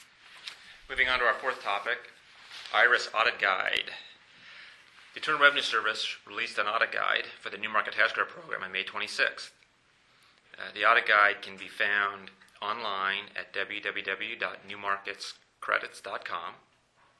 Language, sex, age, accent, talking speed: English, male, 30-49, American, 130 wpm